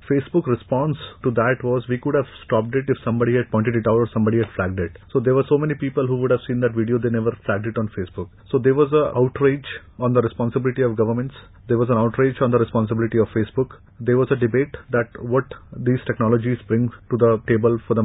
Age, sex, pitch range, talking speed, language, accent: 30-49, male, 115-135 Hz, 240 wpm, English, Indian